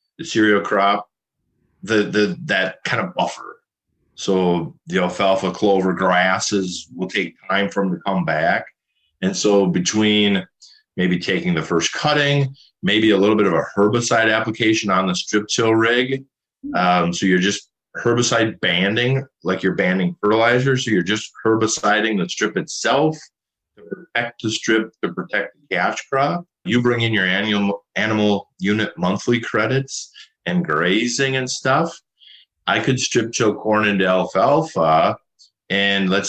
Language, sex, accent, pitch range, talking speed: English, male, American, 95-120 Hz, 150 wpm